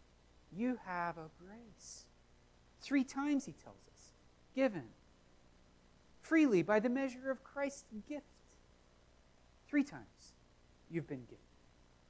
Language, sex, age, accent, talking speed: English, male, 40-59, American, 110 wpm